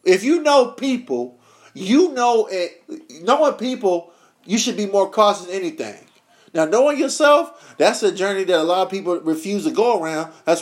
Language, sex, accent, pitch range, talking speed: English, male, American, 175-255 Hz, 180 wpm